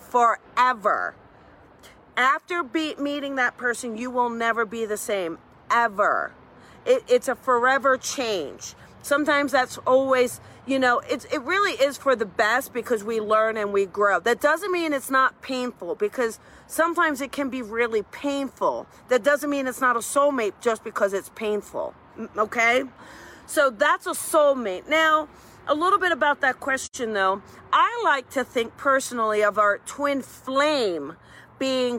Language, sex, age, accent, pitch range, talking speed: English, female, 40-59, American, 230-285 Hz, 155 wpm